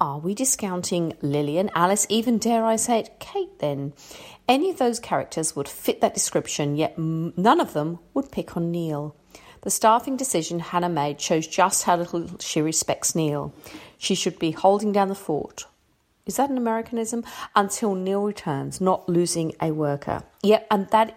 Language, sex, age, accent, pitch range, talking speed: English, female, 40-59, British, 170-220 Hz, 175 wpm